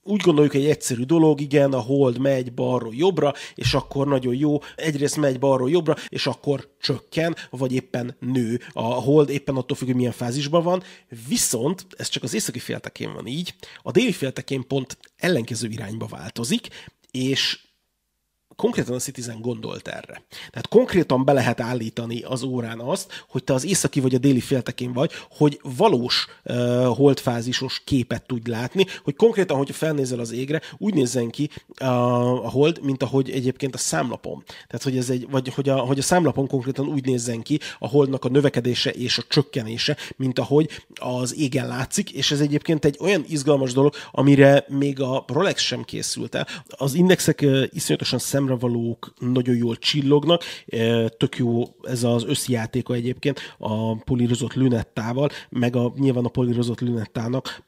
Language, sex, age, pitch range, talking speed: Hungarian, male, 30-49, 125-145 Hz, 170 wpm